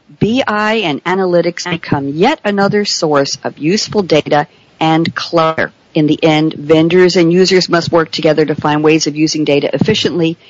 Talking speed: 160 wpm